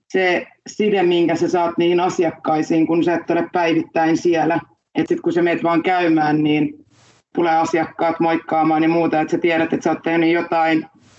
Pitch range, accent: 165-195 Hz, native